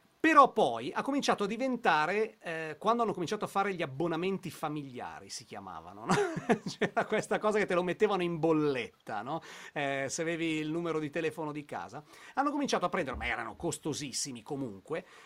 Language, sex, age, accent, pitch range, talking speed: Italian, male, 40-59, native, 160-220 Hz, 175 wpm